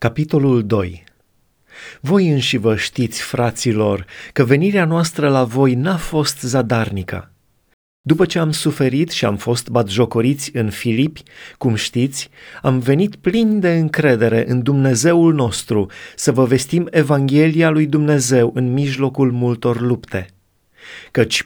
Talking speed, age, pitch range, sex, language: 125 wpm, 30-49, 115-150 Hz, male, Romanian